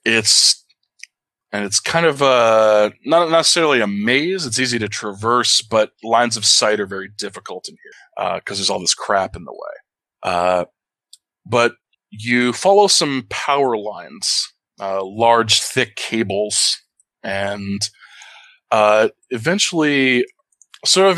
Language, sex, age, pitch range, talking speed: English, male, 20-39, 100-125 Hz, 135 wpm